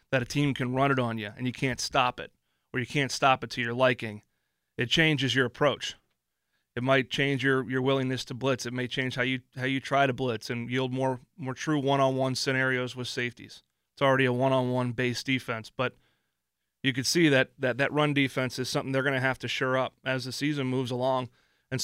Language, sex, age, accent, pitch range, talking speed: English, male, 30-49, American, 125-140 Hz, 225 wpm